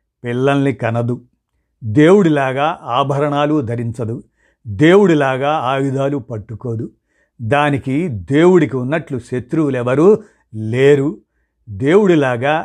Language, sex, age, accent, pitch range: Telugu, male, 50-69, native, 120-155 Hz